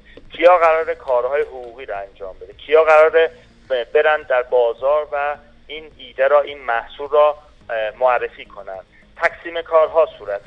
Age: 40-59